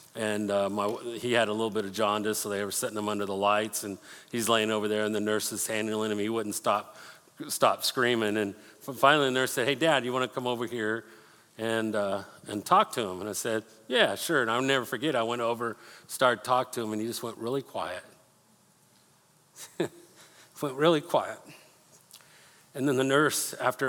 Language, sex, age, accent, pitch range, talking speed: English, male, 50-69, American, 110-135 Hz, 210 wpm